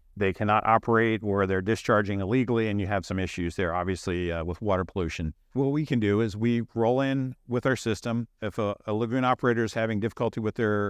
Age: 50-69